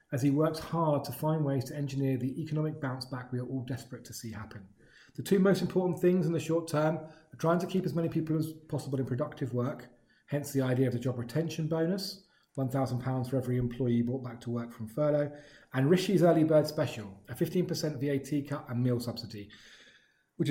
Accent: British